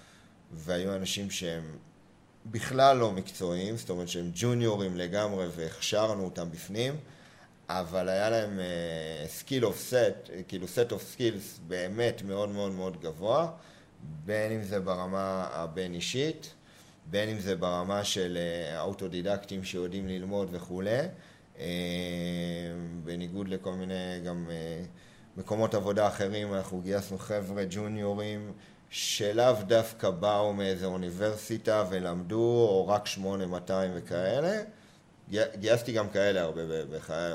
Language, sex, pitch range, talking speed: Hebrew, male, 90-105 Hz, 120 wpm